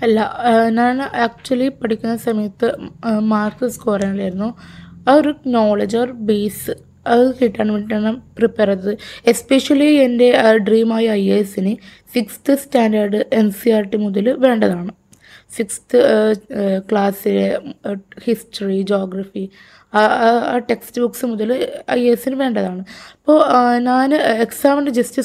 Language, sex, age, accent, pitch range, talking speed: Malayalam, female, 20-39, native, 210-245 Hz, 115 wpm